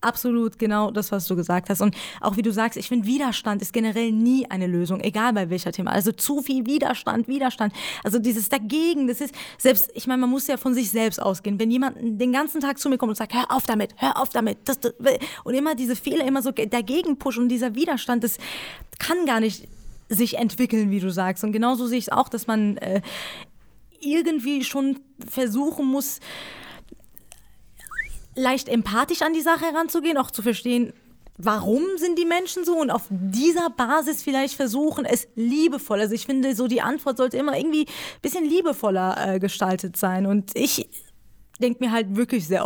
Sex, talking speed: female, 195 wpm